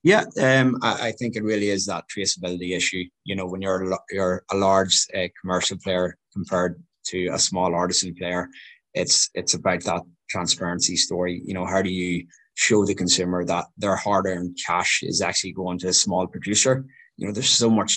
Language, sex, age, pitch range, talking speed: English, male, 20-39, 90-100 Hz, 190 wpm